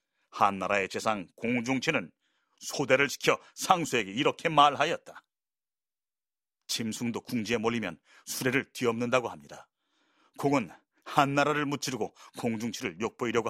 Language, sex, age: Korean, male, 40-59